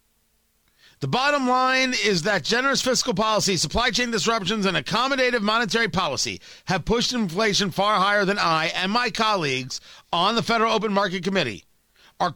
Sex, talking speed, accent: male, 155 wpm, American